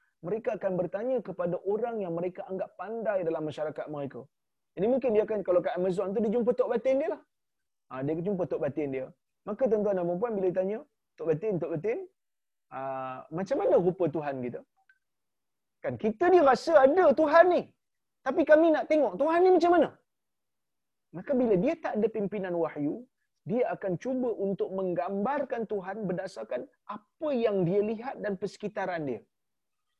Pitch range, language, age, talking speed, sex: 165-225 Hz, Malayalam, 30-49, 170 wpm, male